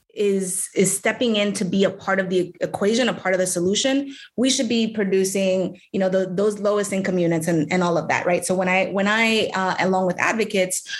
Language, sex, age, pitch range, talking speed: English, female, 20-39, 180-210 Hz, 230 wpm